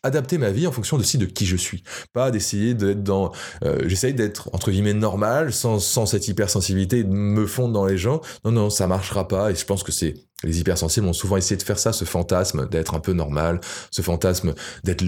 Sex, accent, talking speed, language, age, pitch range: male, French, 225 wpm, French, 20-39, 95-115 Hz